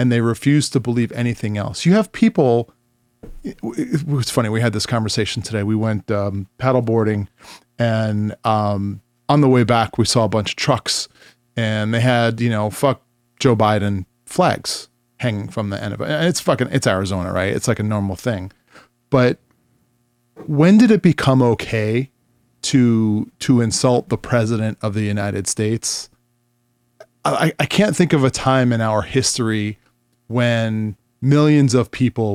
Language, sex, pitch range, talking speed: English, male, 110-135 Hz, 165 wpm